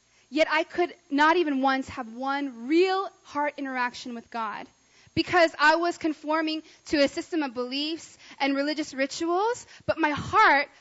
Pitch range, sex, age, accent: 255-335 Hz, female, 20-39, American